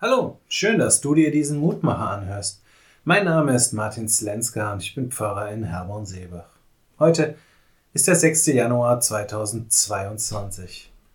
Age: 30-49